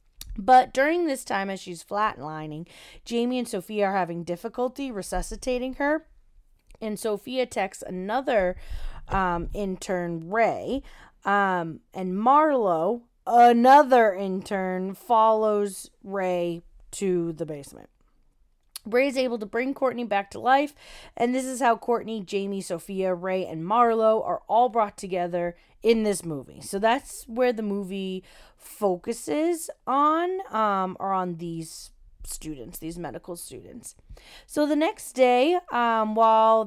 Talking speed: 130 wpm